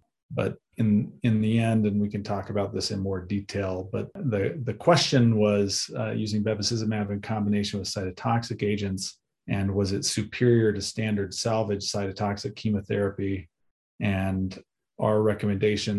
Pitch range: 100-110 Hz